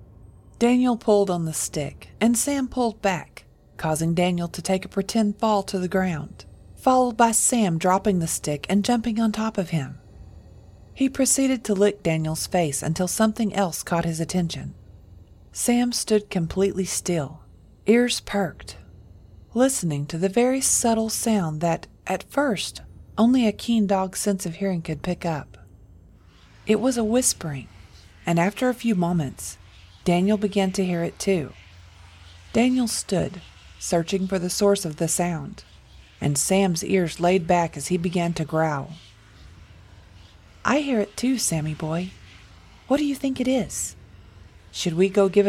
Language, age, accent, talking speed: English, 40-59, American, 155 wpm